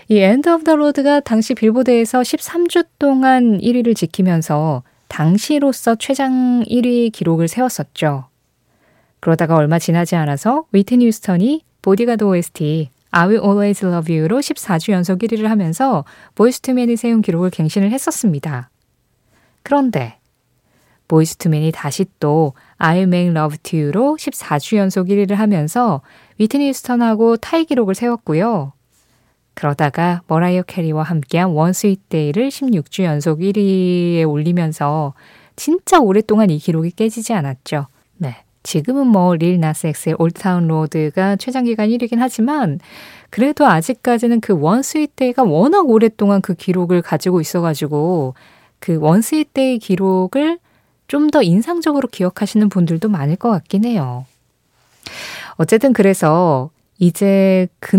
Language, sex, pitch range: Korean, female, 160-235 Hz